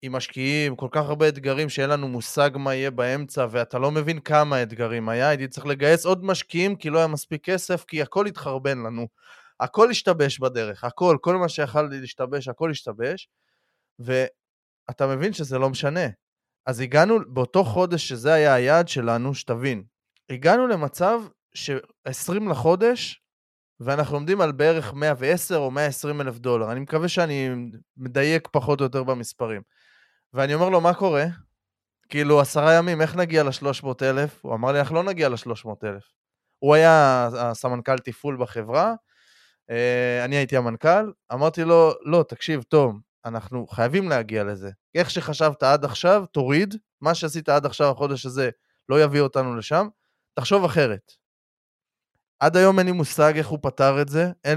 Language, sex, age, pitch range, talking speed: Hebrew, male, 20-39, 130-165 Hz, 155 wpm